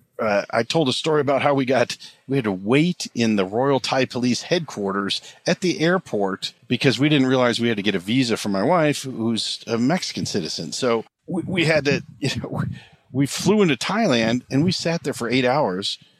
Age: 50-69